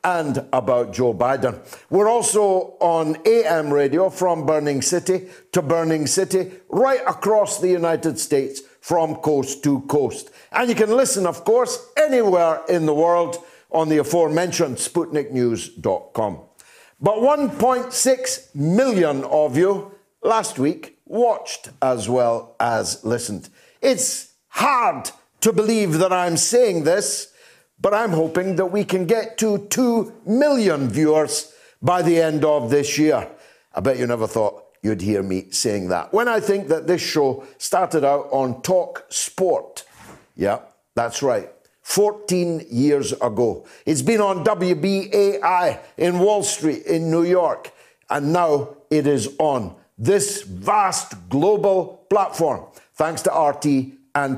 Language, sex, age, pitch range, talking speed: English, male, 60-79, 145-210 Hz, 140 wpm